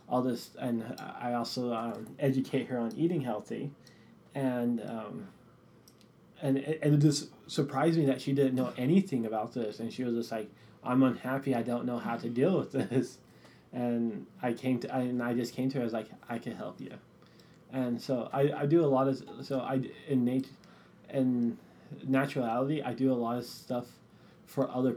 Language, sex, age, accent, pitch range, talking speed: English, male, 20-39, American, 125-150 Hz, 195 wpm